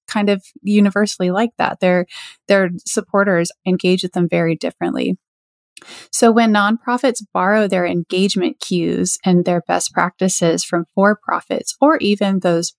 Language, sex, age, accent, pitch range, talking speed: English, female, 30-49, American, 170-200 Hz, 135 wpm